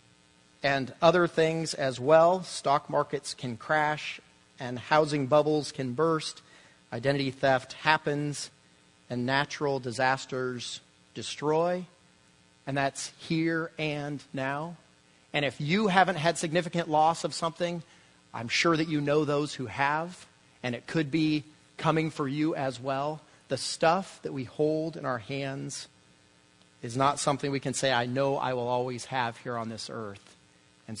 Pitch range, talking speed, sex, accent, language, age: 130-165 Hz, 150 wpm, male, American, English, 40-59